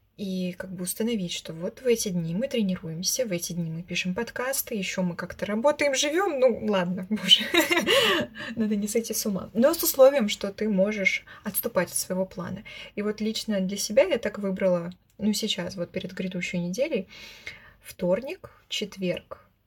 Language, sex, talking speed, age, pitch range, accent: Russian, female, 170 wpm, 20-39, 185-225 Hz, native